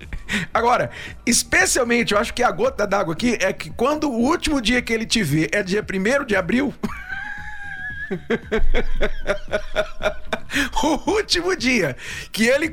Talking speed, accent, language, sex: 135 wpm, Brazilian, Portuguese, male